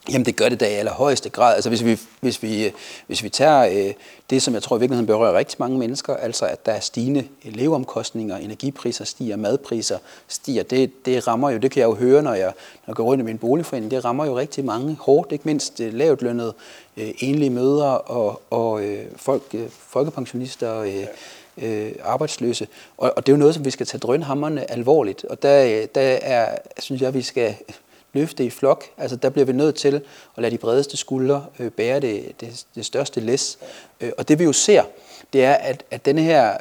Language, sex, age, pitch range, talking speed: Danish, male, 30-49, 115-140 Hz, 215 wpm